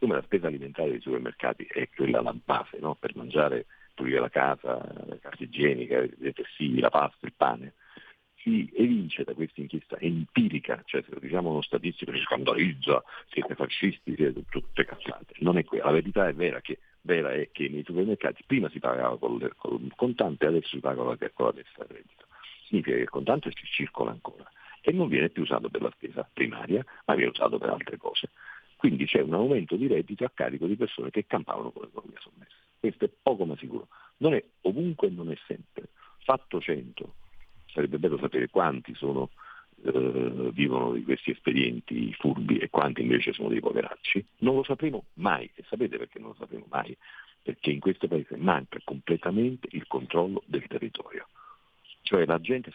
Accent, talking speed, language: native, 190 wpm, Italian